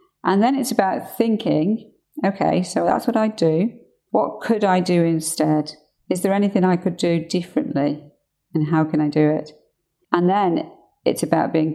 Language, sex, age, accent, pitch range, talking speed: English, female, 40-59, British, 160-210 Hz, 175 wpm